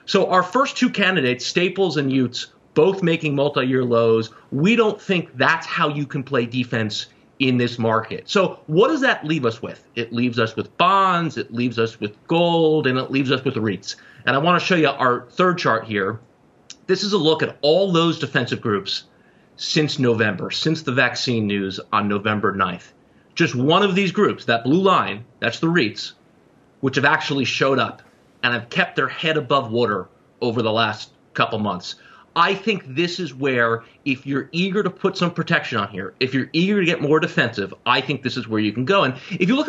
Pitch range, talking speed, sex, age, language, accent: 115-170 Hz, 205 wpm, male, 30-49, English, American